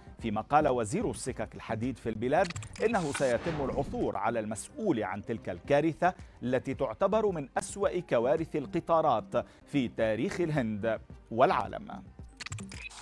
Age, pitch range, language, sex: 40-59, 110-165 Hz, Arabic, male